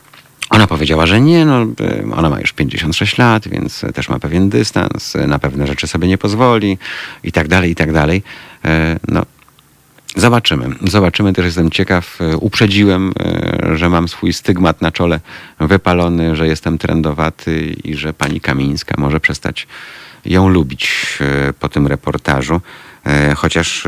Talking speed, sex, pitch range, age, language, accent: 135 wpm, male, 70-85 Hz, 40-59, Polish, native